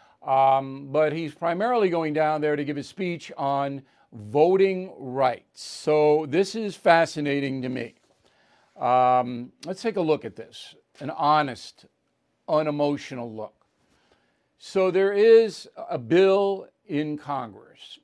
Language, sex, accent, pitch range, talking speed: English, male, American, 140-175 Hz, 125 wpm